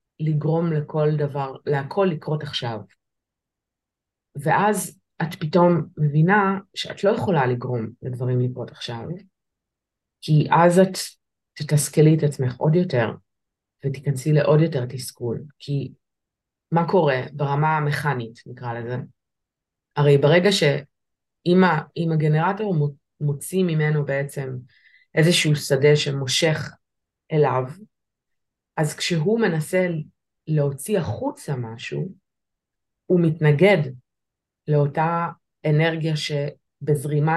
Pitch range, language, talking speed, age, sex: 140-165 Hz, Hebrew, 95 wpm, 30-49, female